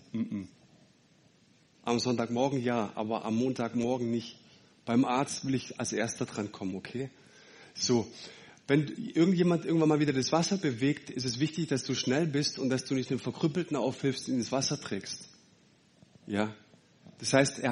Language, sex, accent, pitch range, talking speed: German, male, German, 115-140 Hz, 165 wpm